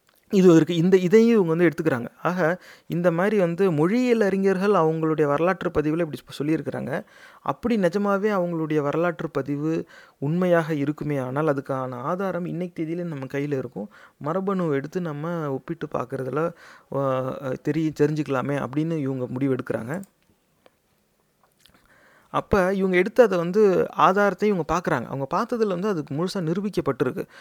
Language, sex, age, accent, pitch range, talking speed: Tamil, male, 30-49, native, 145-180 Hz, 125 wpm